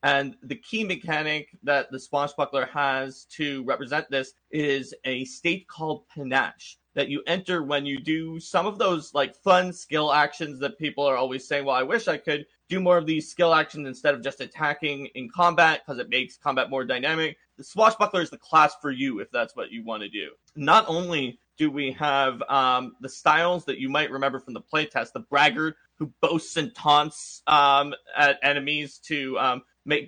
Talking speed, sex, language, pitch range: 195 wpm, male, English, 135-155 Hz